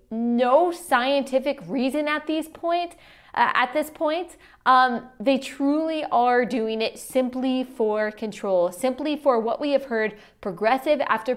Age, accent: 20-39, American